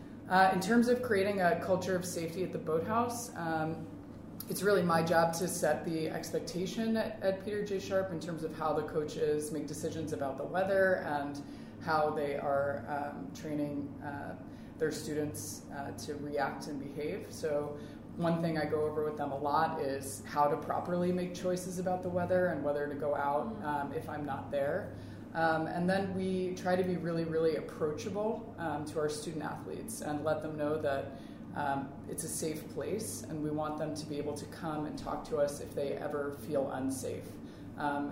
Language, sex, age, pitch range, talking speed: English, female, 20-39, 145-175 Hz, 195 wpm